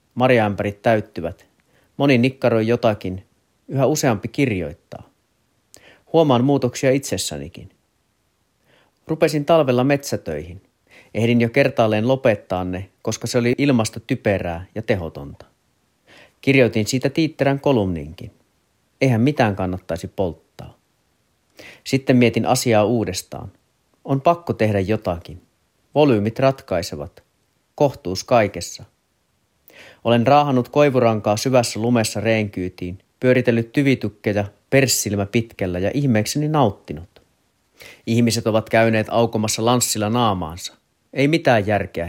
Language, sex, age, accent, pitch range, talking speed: Finnish, male, 30-49, native, 100-130 Hz, 95 wpm